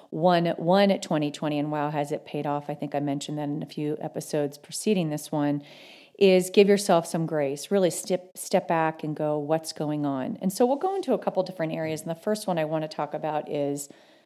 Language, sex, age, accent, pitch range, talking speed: English, female, 40-59, American, 150-180 Hz, 230 wpm